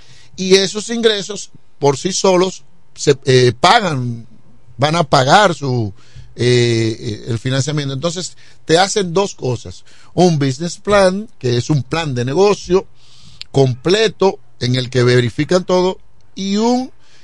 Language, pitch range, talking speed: Spanish, 125-185 Hz, 130 wpm